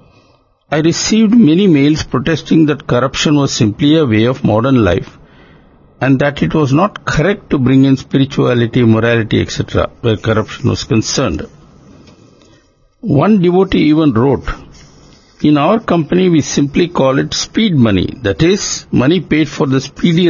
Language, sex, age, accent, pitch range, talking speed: English, male, 60-79, Indian, 110-150 Hz, 150 wpm